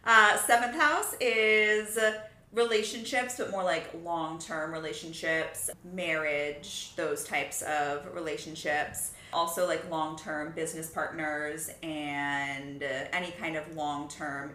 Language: English